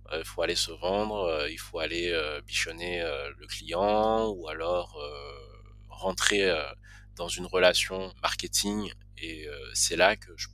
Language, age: French, 20-39